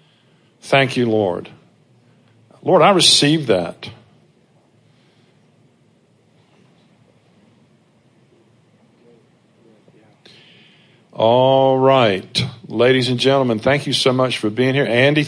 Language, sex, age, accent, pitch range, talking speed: English, male, 50-69, American, 125-150 Hz, 80 wpm